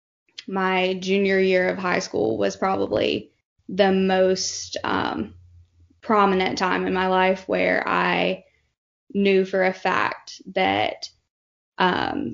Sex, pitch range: female, 120-200 Hz